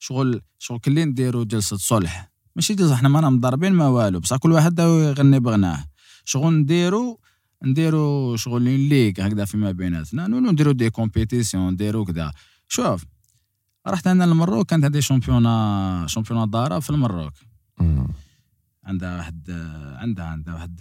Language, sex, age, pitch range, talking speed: French, male, 20-39, 100-150 Hz, 140 wpm